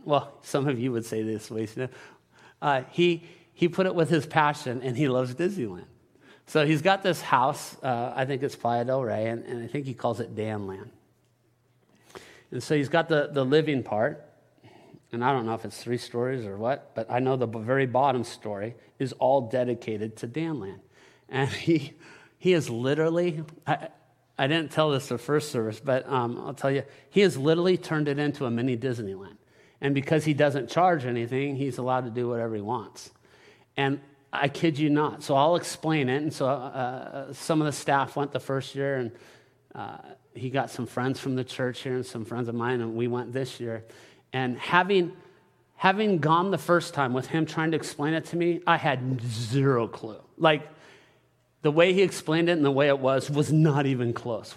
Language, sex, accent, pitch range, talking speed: English, male, American, 125-155 Hz, 205 wpm